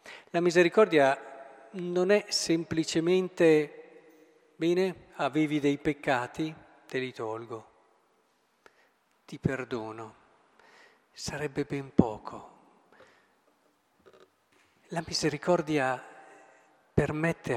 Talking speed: 70 wpm